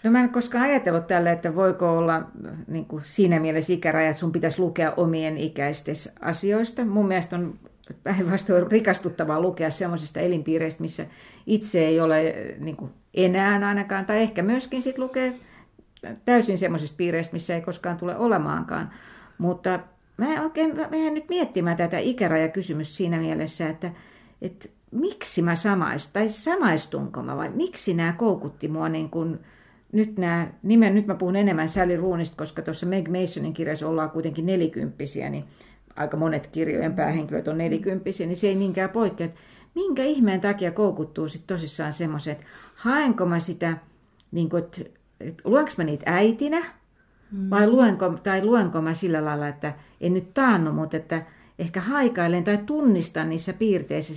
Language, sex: Finnish, female